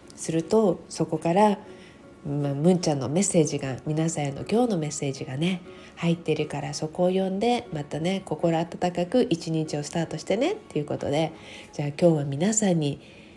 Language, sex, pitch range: Japanese, female, 150-185 Hz